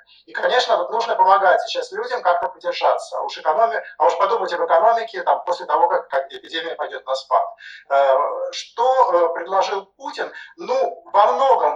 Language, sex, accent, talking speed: Russian, male, native, 160 wpm